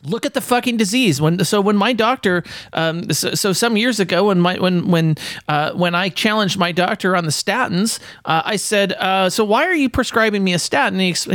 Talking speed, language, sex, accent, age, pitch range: 225 wpm, English, male, American, 40-59, 125-190 Hz